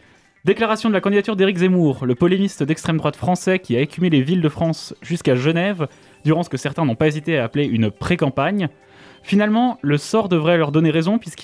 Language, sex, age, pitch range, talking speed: French, male, 20-39, 140-185 Hz, 200 wpm